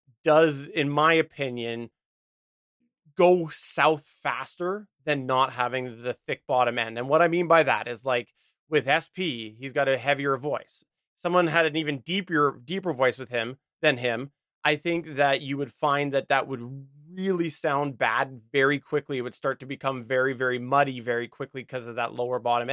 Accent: American